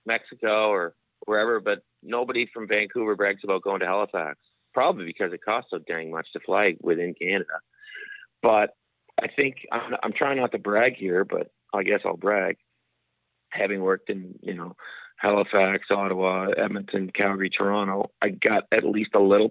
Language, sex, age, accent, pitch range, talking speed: English, male, 40-59, American, 100-120 Hz, 165 wpm